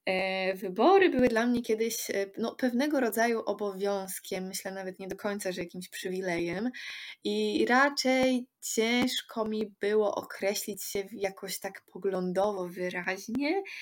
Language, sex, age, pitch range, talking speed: Polish, female, 20-39, 190-240 Hz, 115 wpm